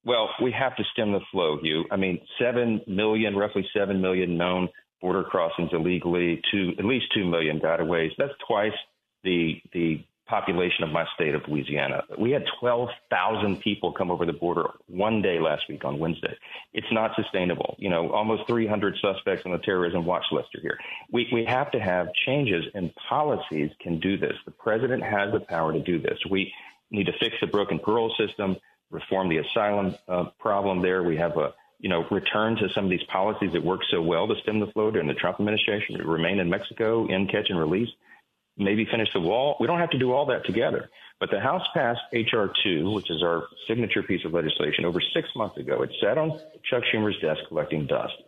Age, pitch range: 40-59, 85-110 Hz